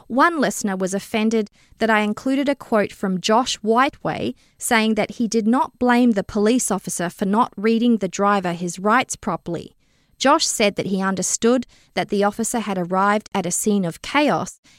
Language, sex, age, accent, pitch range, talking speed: English, female, 20-39, Australian, 195-245 Hz, 180 wpm